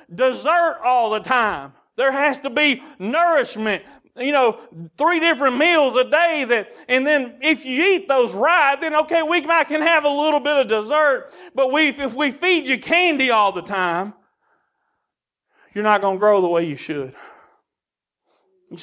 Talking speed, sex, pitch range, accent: 175 wpm, male, 220-300 Hz, American